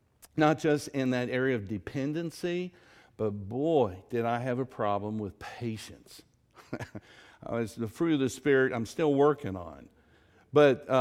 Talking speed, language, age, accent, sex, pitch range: 145 wpm, English, 50-69, American, male, 110-150 Hz